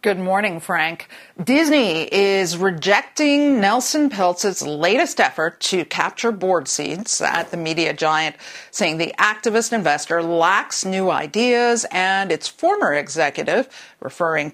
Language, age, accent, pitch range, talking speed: English, 40-59, American, 170-235 Hz, 125 wpm